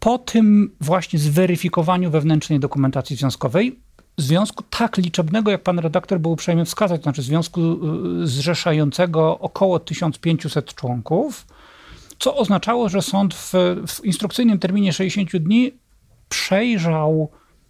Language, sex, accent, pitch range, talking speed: Polish, male, native, 150-185 Hz, 115 wpm